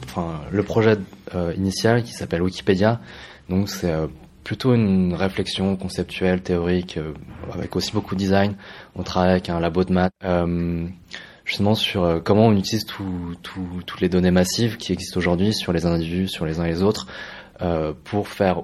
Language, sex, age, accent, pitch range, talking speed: French, male, 20-39, French, 85-95 Hz, 185 wpm